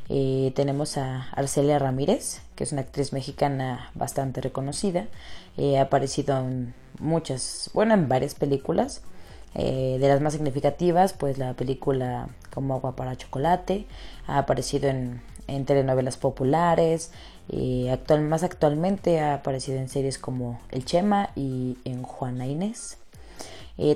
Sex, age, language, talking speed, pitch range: female, 20-39, Spanish, 135 wpm, 130-160 Hz